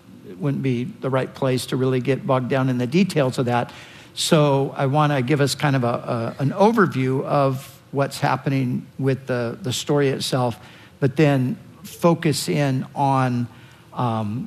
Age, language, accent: 50-69, English, American